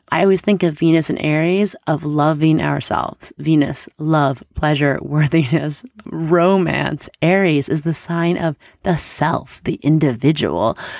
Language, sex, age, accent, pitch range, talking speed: English, female, 30-49, American, 150-175 Hz, 130 wpm